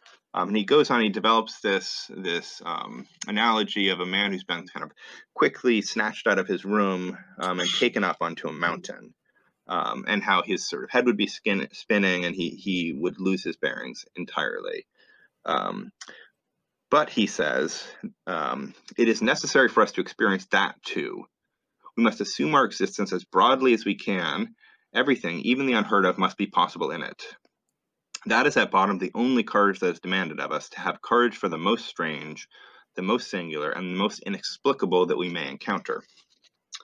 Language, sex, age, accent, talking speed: English, male, 30-49, American, 185 wpm